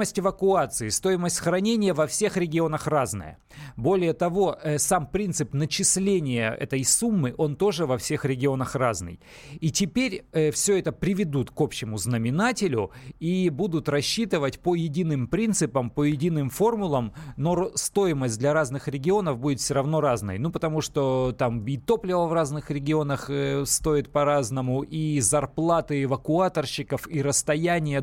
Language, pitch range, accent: Russian, 125-165 Hz, native